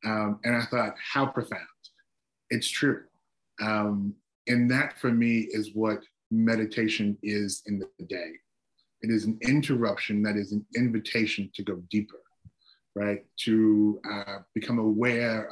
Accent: American